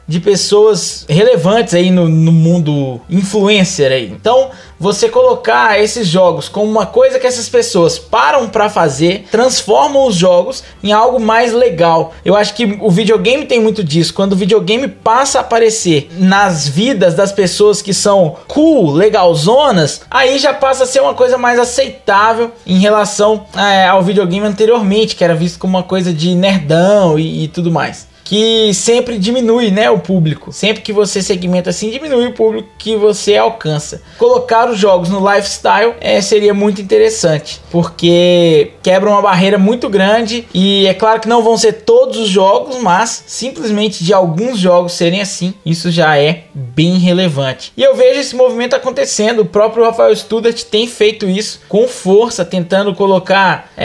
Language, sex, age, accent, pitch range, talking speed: Portuguese, male, 20-39, Brazilian, 180-230 Hz, 165 wpm